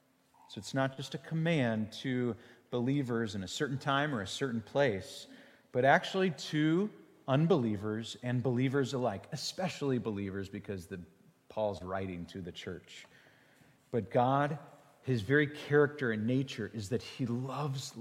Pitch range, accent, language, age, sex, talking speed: 115-150 Hz, American, English, 30-49, male, 140 wpm